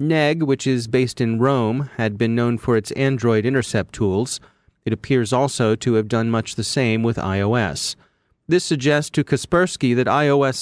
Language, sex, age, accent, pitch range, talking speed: English, male, 30-49, American, 115-145 Hz, 175 wpm